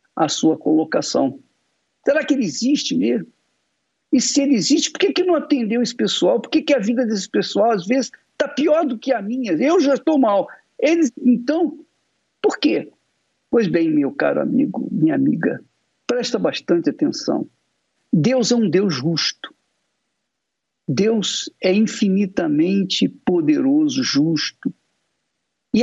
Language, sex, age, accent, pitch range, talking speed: Portuguese, male, 60-79, Brazilian, 195-290 Hz, 145 wpm